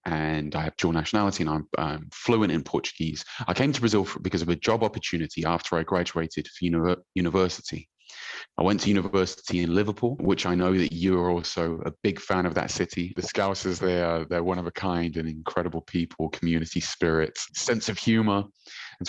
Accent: British